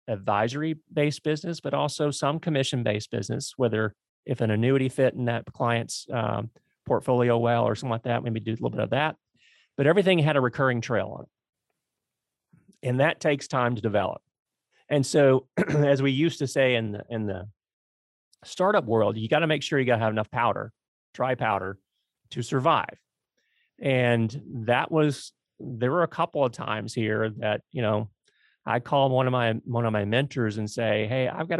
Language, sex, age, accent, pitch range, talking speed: English, male, 40-59, American, 115-140 Hz, 185 wpm